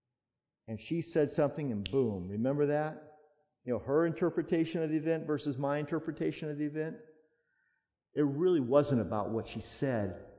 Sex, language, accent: male, English, American